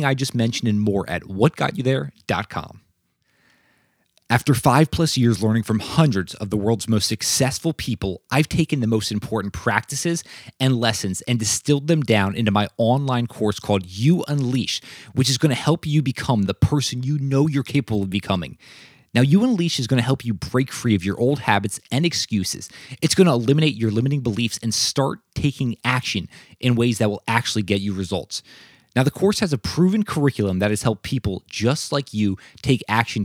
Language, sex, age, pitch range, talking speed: English, male, 20-39, 105-140 Hz, 195 wpm